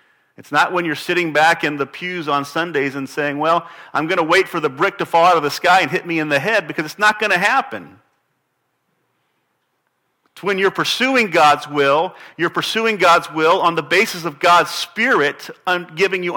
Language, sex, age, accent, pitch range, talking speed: English, male, 40-59, American, 135-175 Hz, 210 wpm